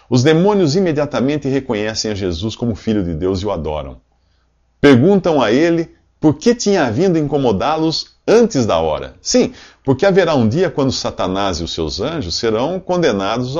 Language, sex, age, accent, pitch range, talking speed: English, male, 40-59, Brazilian, 95-140 Hz, 165 wpm